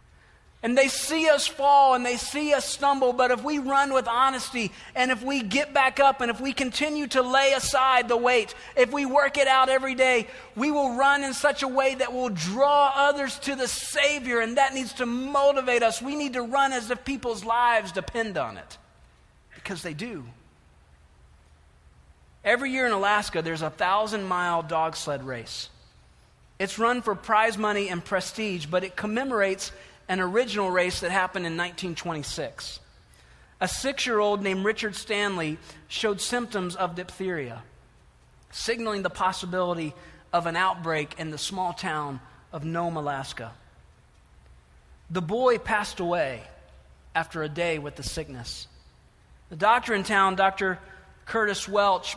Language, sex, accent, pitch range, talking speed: English, male, American, 165-250 Hz, 160 wpm